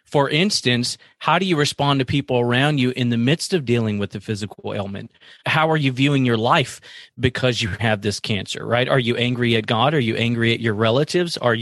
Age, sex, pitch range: 30-49, male, 115-140 Hz